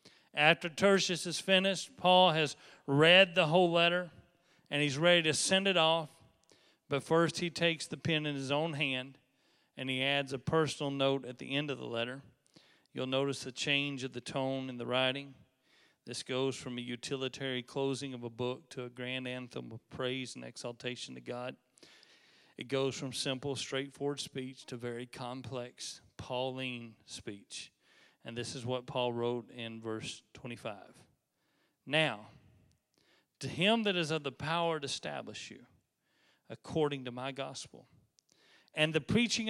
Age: 40-59